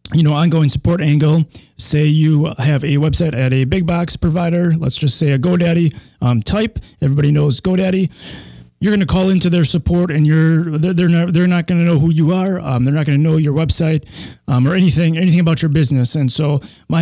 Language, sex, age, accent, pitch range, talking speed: English, male, 20-39, American, 140-170 Hz, 220 wpm